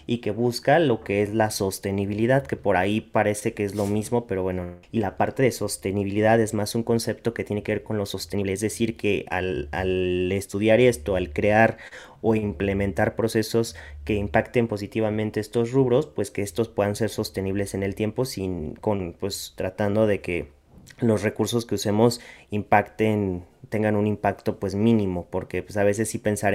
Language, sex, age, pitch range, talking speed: Spanish, male, 30-49, 100-115 Hz, 185 wpm